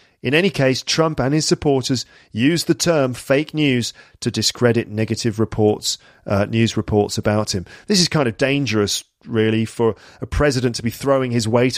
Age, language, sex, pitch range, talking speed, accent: 40-59, English, male, 110-145 Hz, 180 wpm, British